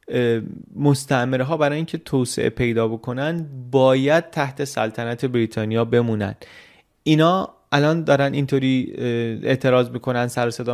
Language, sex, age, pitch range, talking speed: Persian, male, 30-49, 115-155 Hz, 110 wpm